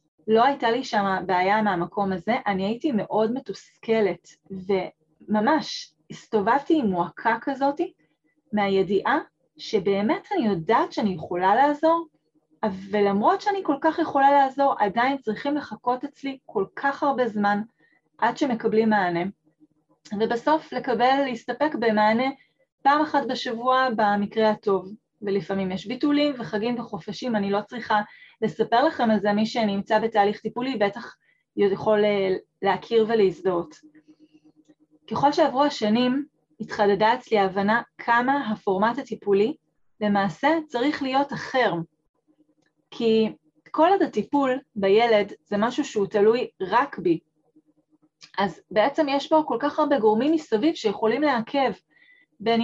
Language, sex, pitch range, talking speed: Hebrew, female, 200-275 Hz, 120 wpm